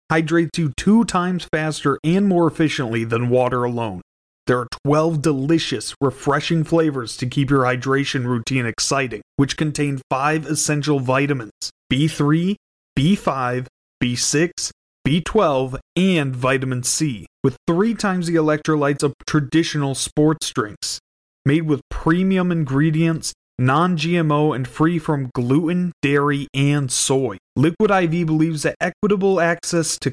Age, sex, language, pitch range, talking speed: 30-49, male, English, 135-165 Hz, 125 wpm